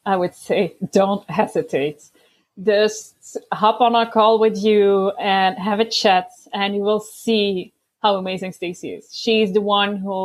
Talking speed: 165 wpm